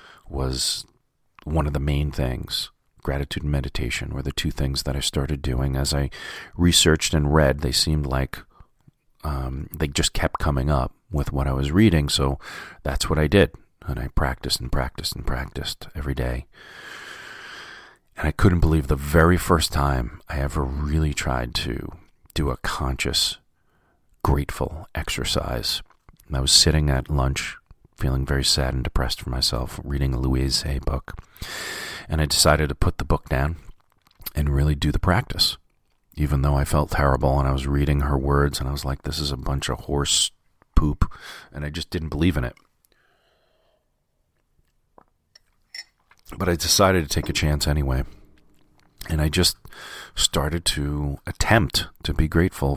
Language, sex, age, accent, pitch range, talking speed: English, male, 40-59, American, 70-80 Hz, 165 wpm